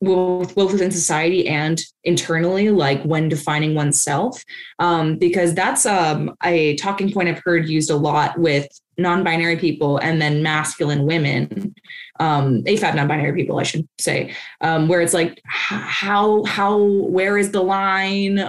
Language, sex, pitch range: English, female, 160-195 Hz